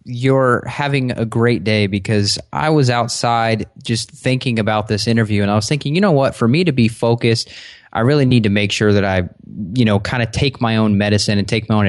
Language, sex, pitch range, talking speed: English, male, 105-125 Hz, 230 wpm